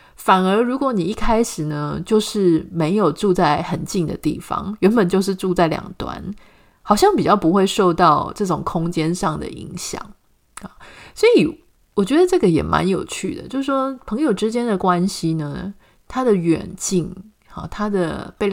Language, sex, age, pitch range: Chinese, female, 30-49, 170-210 Hz